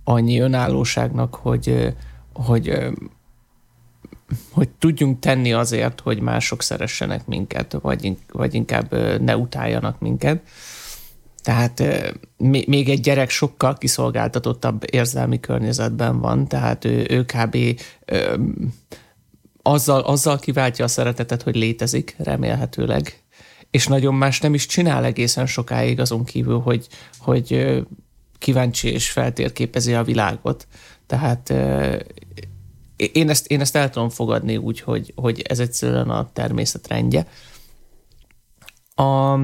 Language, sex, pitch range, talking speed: Hungarian, male, 105-135 Hz, 110 wpm